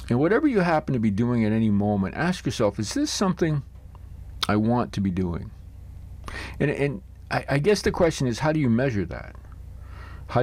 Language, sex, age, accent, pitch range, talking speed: English, male, 50-69, American, 90-120 Hz, 195 wpm